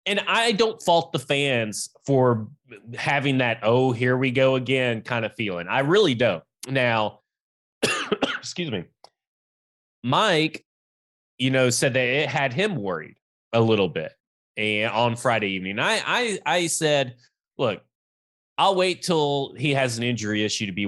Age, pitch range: 20-39, 105-145 Hz